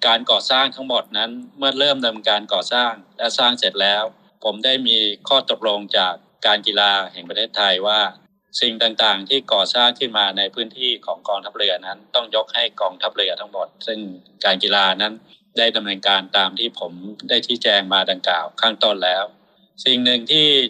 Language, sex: Thai, male